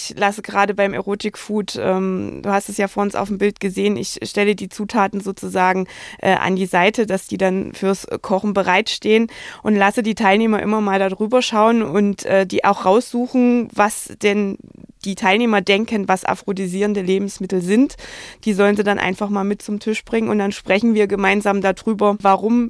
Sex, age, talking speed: female, 20-39, 190 wpm